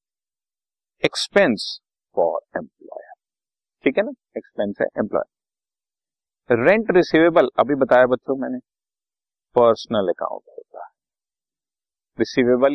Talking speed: 95 wpm